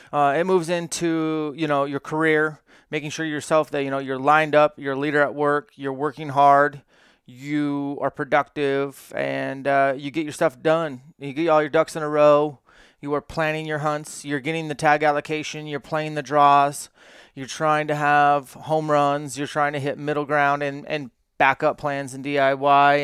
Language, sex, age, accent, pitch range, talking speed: English, male, 30-49, American, 140-160 Hz, 195 wpm